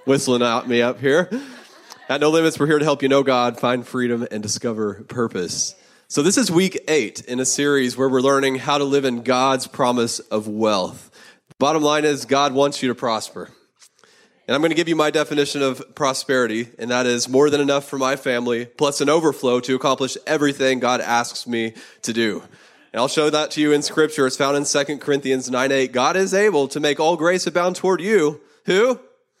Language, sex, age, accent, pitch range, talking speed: English, male, 30-49, American, 130-170 Hz, 210 wpm